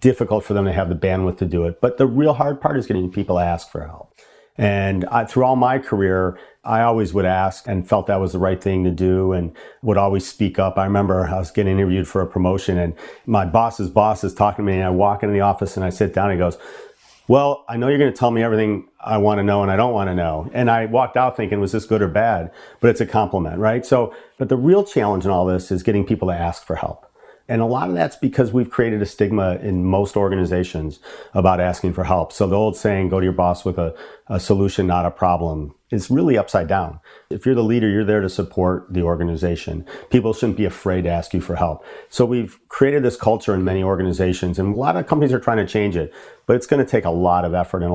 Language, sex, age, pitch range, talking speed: English, male, 40-59, 90-115 Hz, 260 wpm